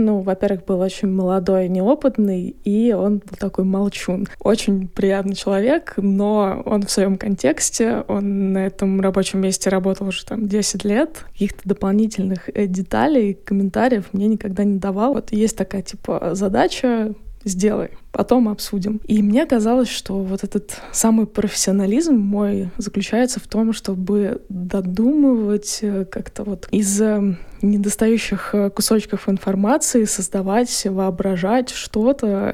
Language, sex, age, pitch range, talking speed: Russian, female, 20-39, 195-220 Hz, 125 wpm